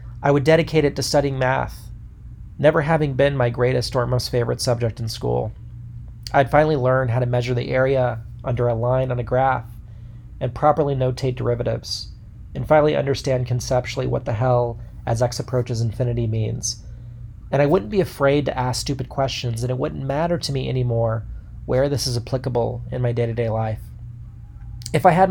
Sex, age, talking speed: male, 30-49, 180 wpm